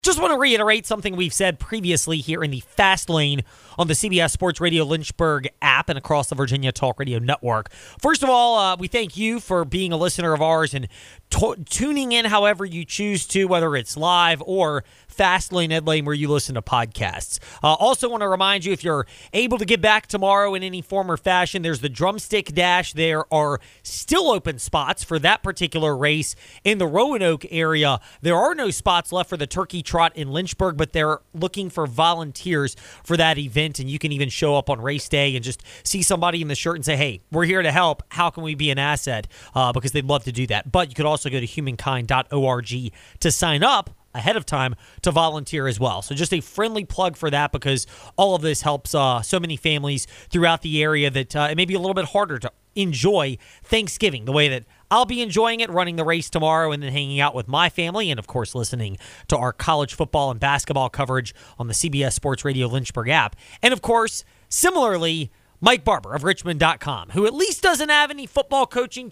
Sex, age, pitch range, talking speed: male, 30-49, 140-190 Hz, 215 wpm